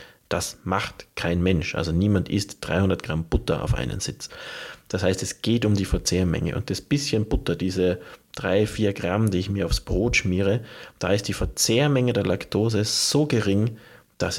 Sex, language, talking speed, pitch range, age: male, German, 175 wpm, 90-115 Hz, 30-49